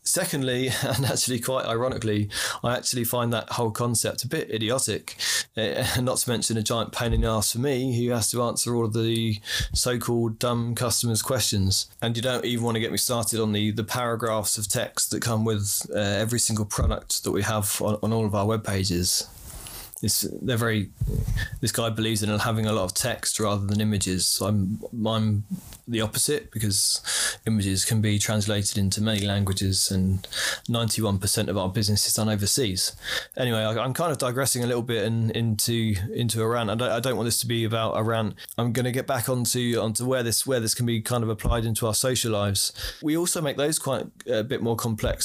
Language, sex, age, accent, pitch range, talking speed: English, male, 20-39, British, 105-125 Hz, 215 wpm